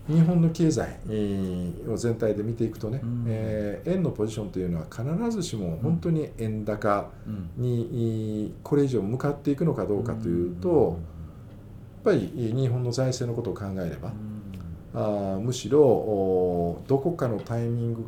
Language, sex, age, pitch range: Japanese, male, 50-69, 100-145 Hz